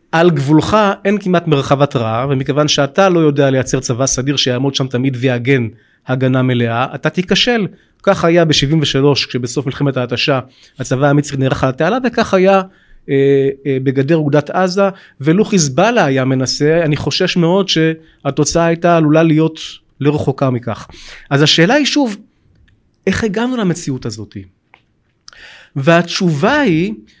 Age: 30-49